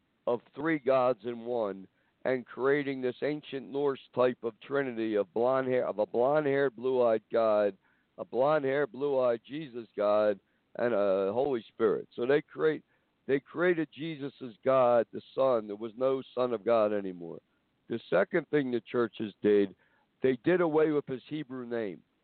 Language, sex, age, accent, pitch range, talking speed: English, male, 60-79, American, 110-140 Hz, 175 wpm